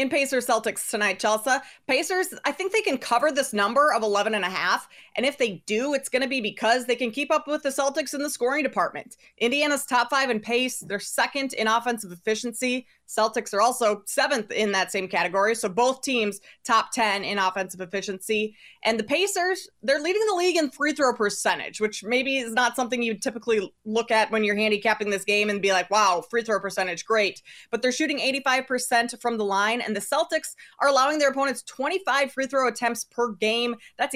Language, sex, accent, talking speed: English, female, American, 210 wpm